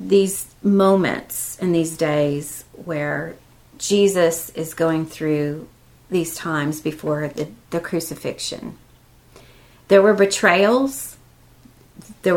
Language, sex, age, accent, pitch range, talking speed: English, female, 40-59, American, 160-200 Hz, 95 wpm